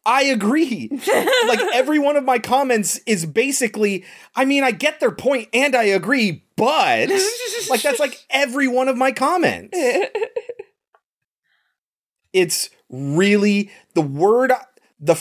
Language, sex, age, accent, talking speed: English, male, 30-49, American, 130 wpm